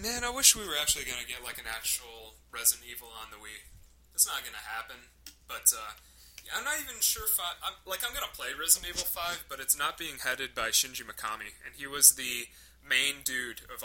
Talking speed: 220 wpm